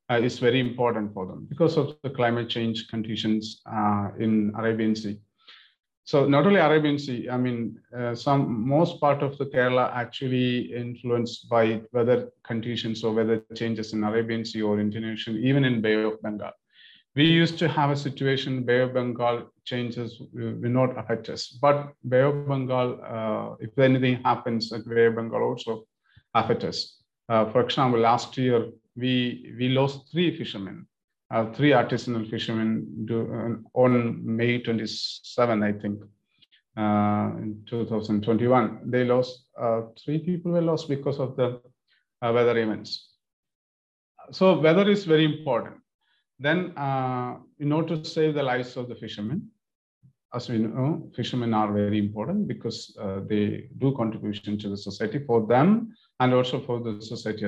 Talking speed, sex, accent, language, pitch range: 160 wpm, male, Indian, English, 110-135 Hz